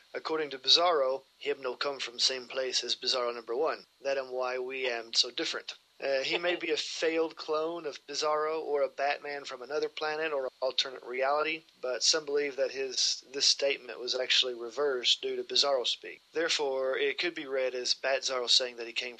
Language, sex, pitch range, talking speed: English, male, 125-175 Hz, 205 wpm